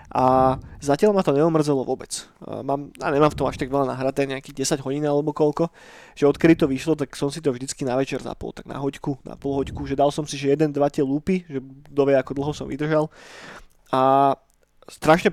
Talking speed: 210 wpm